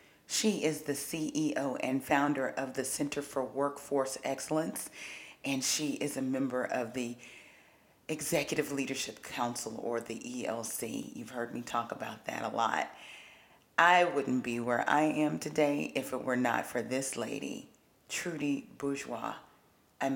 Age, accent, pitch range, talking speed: 40-59, American, 125-150 Hz, 150 wpm